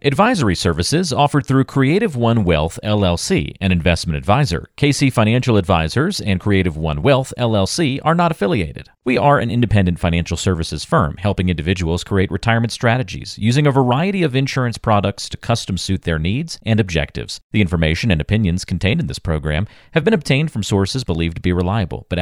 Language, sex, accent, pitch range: English, male, American, 85-125 Hz